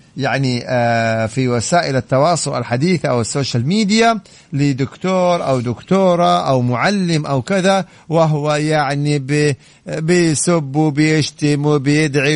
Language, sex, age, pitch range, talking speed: English, male, 50-69, 135-160 Hz, 100 wpm